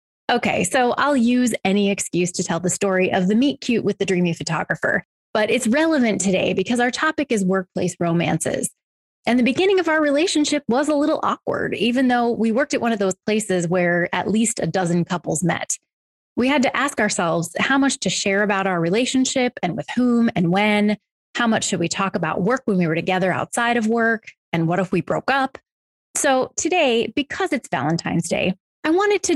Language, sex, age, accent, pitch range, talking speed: English, female, 20-39, American, 185-245 Hz, 200 wpm